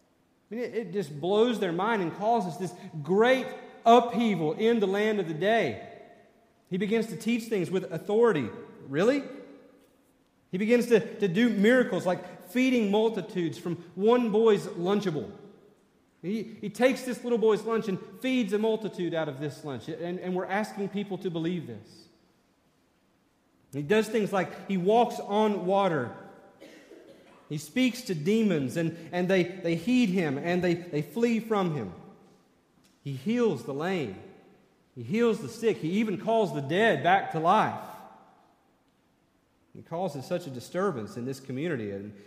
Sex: male